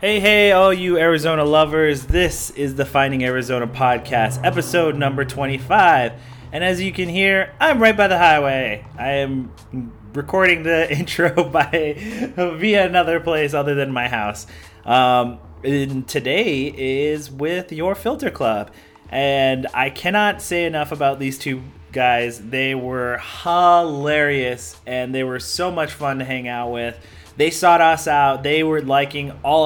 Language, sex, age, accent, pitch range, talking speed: English, male, 30-49, American, 125-165 Hz, 155 wpm